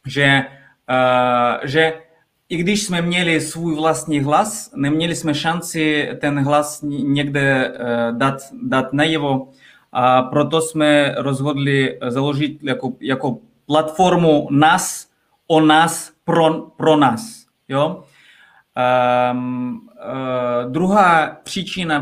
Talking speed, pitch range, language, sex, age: 95 wpm, 135-175 Hz, Czech, male, 20-39